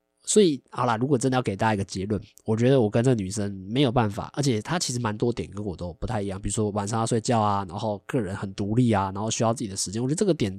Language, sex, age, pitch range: Chinese, male, 20-39, 100-130 Hz